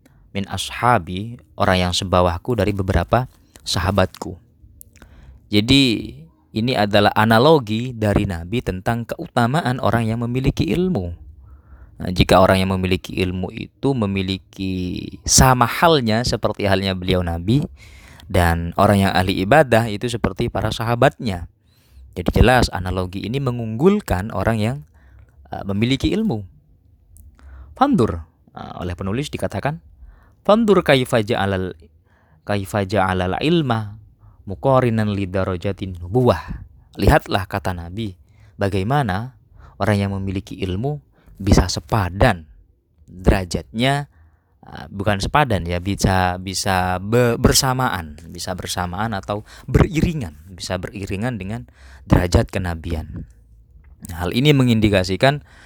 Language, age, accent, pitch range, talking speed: Indonesian, 20-39, native, 90-115 Hz, 95 wpm